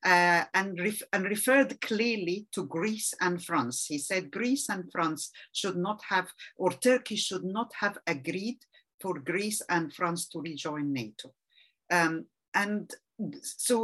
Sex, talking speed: female, 145 wpm